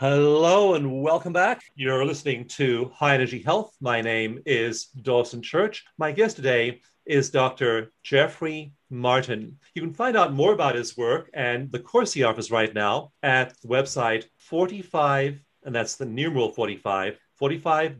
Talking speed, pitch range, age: 155 wpm, 120-150 Hz, 40-59